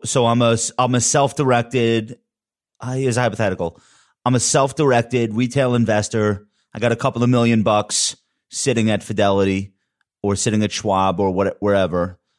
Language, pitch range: English, 100-120 Hz